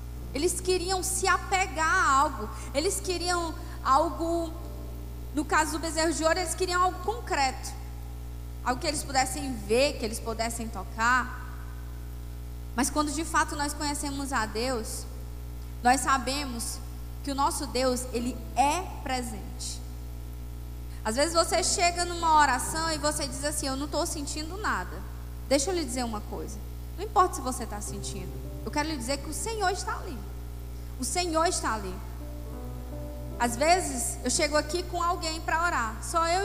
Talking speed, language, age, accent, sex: 160 wpm, Portuguese, 10-29, Brazilian, female